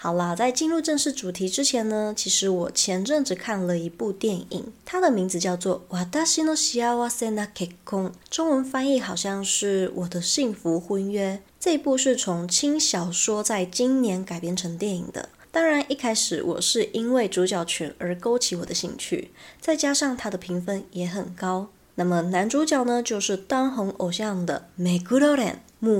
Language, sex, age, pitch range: Chinese, female, 20-39, 180-245 Hz